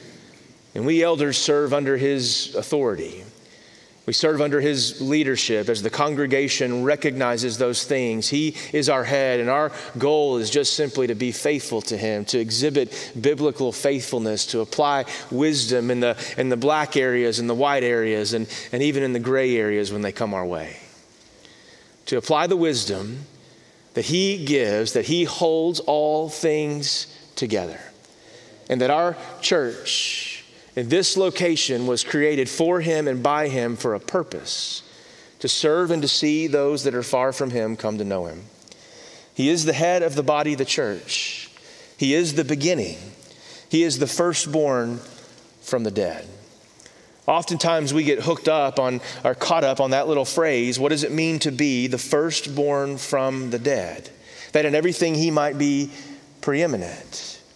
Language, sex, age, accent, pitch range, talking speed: English, male, 30-49, American, 125-150 Hz, 165 wpm